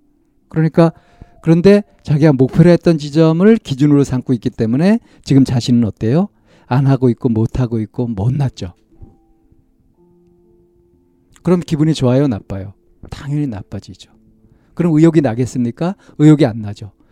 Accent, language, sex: native, Korean, male